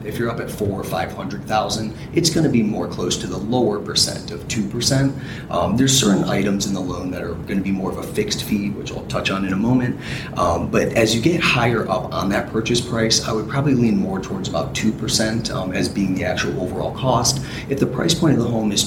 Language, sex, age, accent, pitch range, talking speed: English, male, 30-49, American, 100-135 Hz, 260 wpm